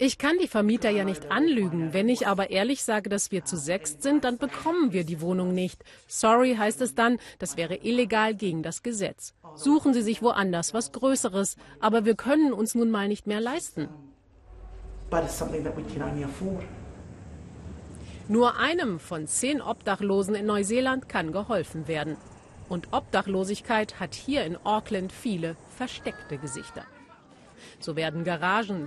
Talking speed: 145 wpm